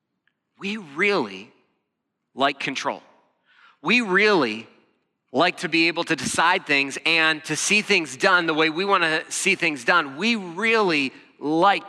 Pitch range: 150-200 Hz